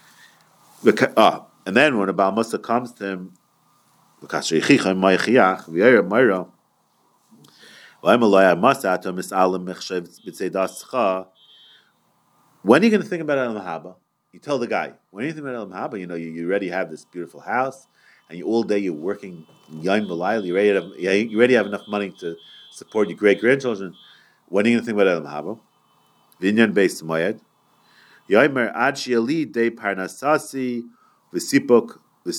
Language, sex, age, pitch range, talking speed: English, male, 40-59, 95-130 Hz, 125 wpm